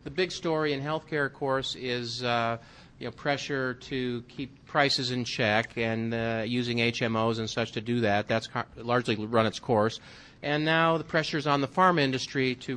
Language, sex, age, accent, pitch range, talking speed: English, male, 40-59, American, 115-140 Hz, 195 wpm